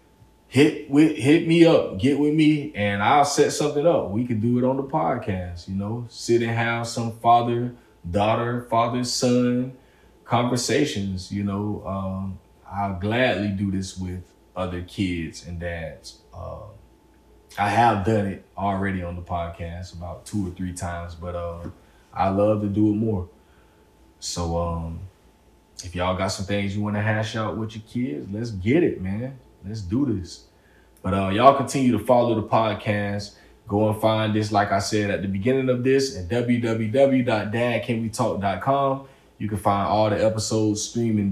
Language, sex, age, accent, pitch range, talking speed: English, male, 20-39, American, 95-120 Hz, 170 wpm